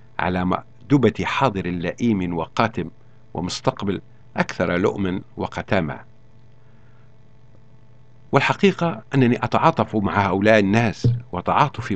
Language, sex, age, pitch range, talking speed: Arabic, male, 50-69, 105-125 Hz, 80 wpm